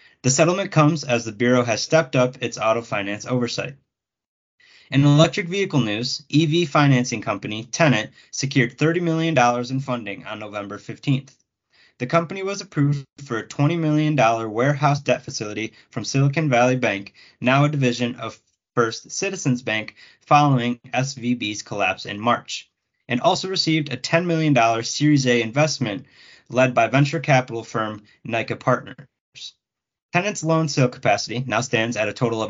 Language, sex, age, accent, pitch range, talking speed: English, male, 20-39, American, 115-150 Hz, 150 wpm